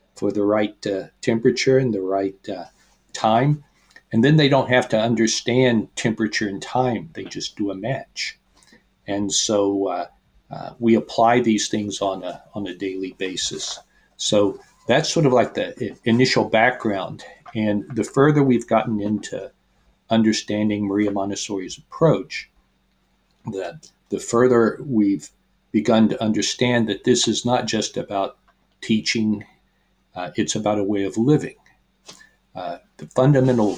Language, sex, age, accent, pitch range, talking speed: English, male, 50-69, American, 100-125 Hz, 145 wpm